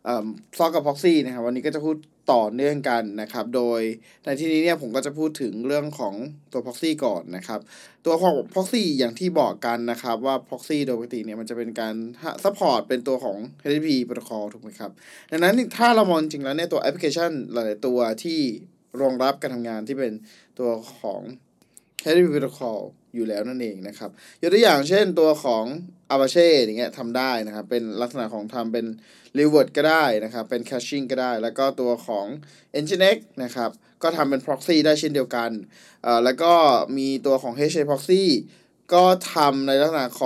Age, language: 20-39, Thai